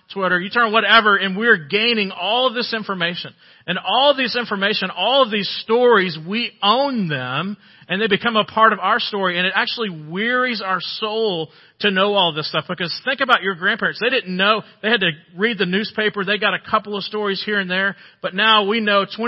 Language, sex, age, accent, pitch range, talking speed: English, male, 40-59, American, 180-225 Hz, 215 wpm